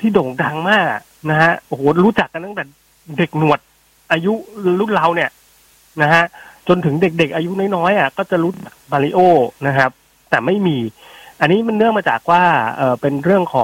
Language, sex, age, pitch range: Thai, male, 30-49, 130-170 Hz